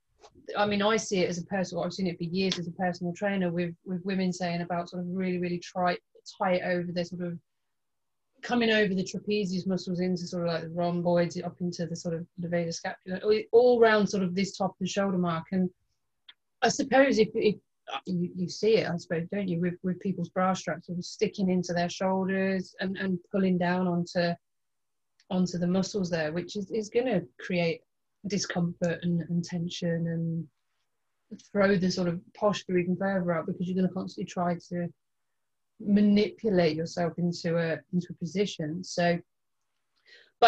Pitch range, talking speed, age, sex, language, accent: 175-200 Hz, 185 wpm, 30-49, female, English, British